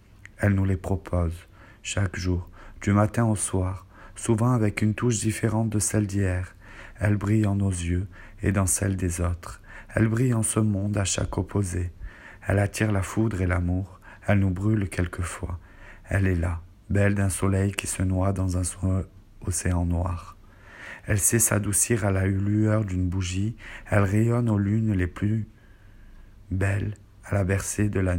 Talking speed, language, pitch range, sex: 170 wpm, French, 95-105 Hz, male